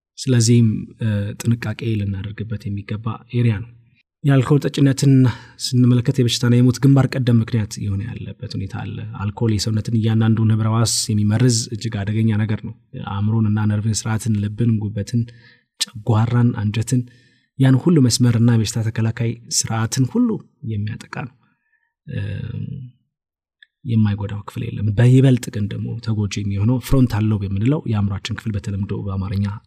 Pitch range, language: 105-125 Hz, Amharic